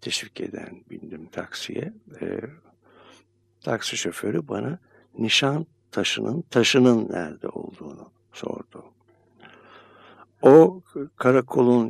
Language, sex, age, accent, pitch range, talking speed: Turkish, male, 60-79, native, 115-155 Hz, 80 wpm